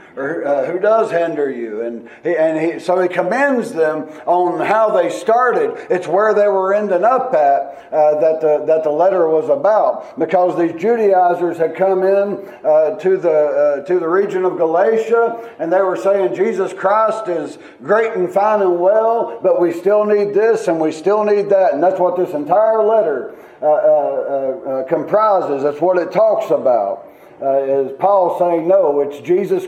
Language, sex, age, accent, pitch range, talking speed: English, male, 50-69, American, 160-205 Hz, 180 wpm